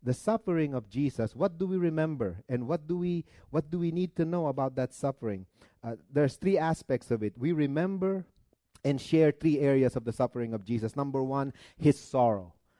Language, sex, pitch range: English, male, 120-160 Hz